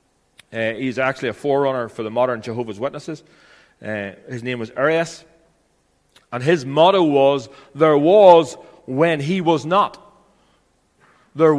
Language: English